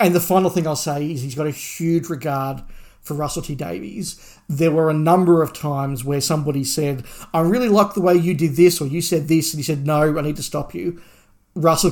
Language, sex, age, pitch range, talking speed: English, male, 40-59, 145-170 Hz, 235 wpm